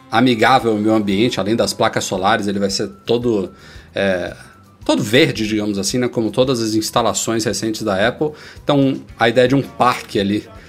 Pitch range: 110-130 Hz